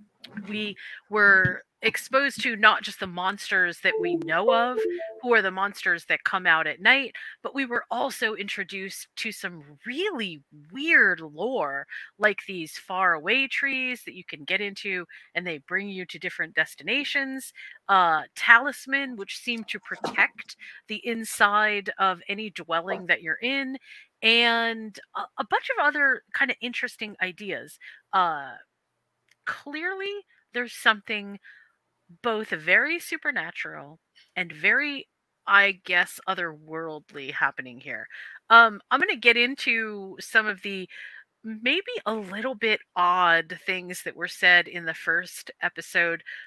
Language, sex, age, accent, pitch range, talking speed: English, female, 30-49, American, 185-245 Hz, 140 wpm